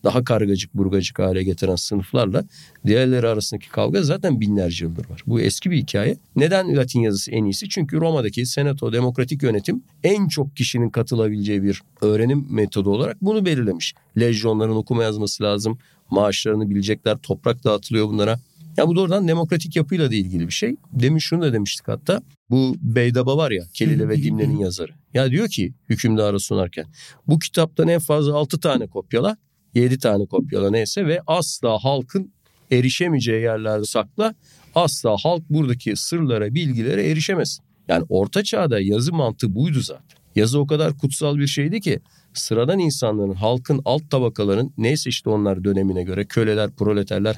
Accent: native